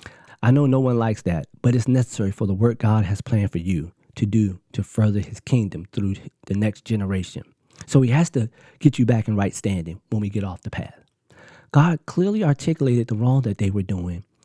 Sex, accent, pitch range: male, American, 100-130 Hz